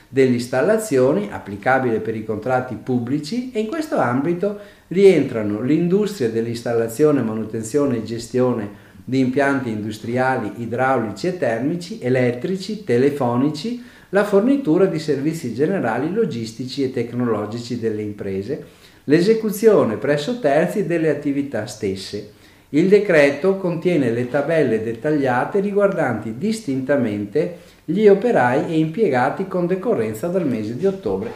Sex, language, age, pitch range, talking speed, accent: male, Italian, 50-69, 115-180 Hz, 115 wpm, native